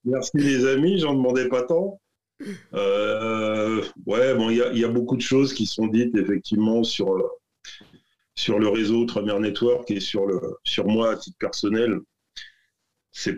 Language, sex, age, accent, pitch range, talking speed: French, male, 40-59, French, 100-120 Hz, 160 wpm